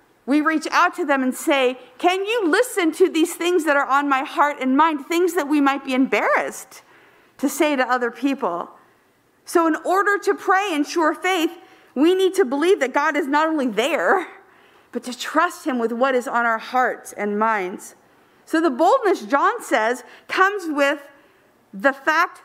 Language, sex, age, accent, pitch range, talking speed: English, female, 50-69, American, 235-325 Hz, 185 wpm